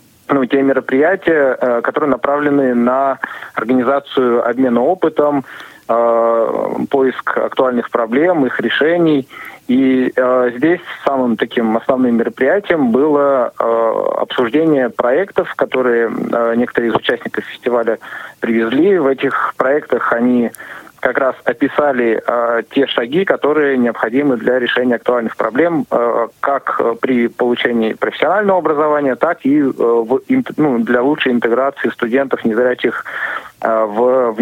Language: Russian